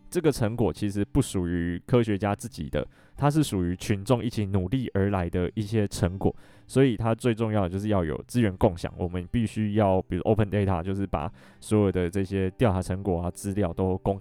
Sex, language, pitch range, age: male, Chinese, 95-115 Hz, 20-39